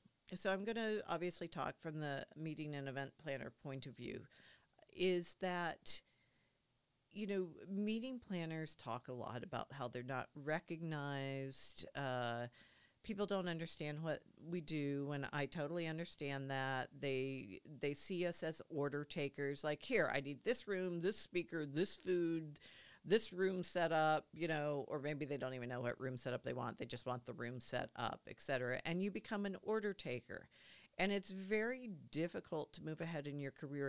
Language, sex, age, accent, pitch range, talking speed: English, female, 50-69, American, 135-180 Hz, 180 wpm